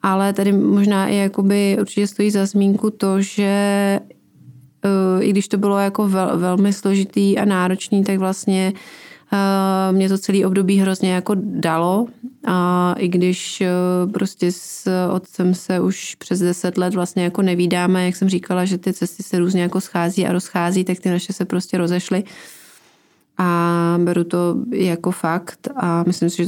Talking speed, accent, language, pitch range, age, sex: 160 wpm, native, Czech, 175-195 Hz, 20-39, female